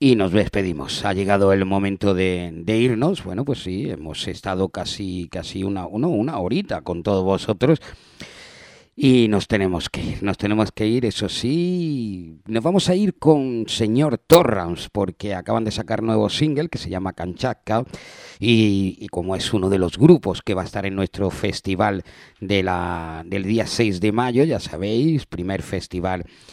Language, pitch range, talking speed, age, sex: Spanish, 90-115 Hz, 175 wpm, 50-69, male